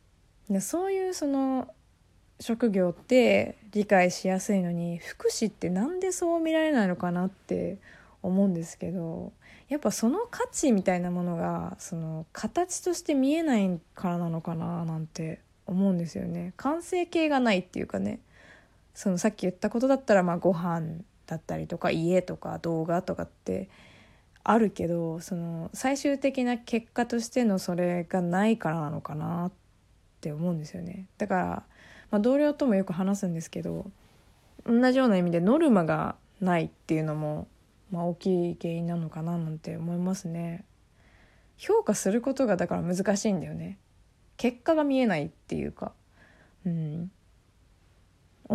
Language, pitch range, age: Japanese, 165-235 Hz, 20-39